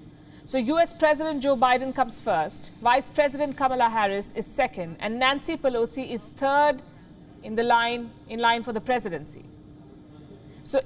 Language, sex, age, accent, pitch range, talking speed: English, female, 50-69, Indian, 210-270 Hz, 150 wpm